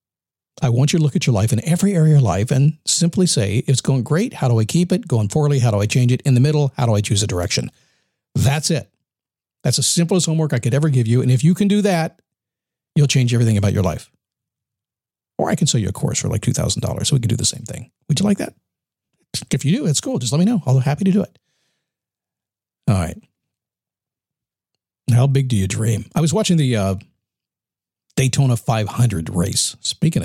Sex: male